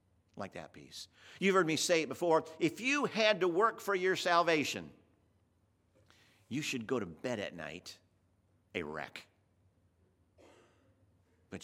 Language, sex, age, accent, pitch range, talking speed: English, male, 50-69, American, 90-130 Hz, 140 wpm